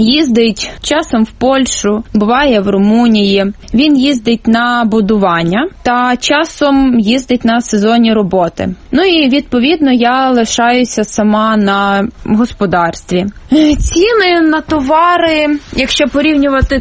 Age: 20-39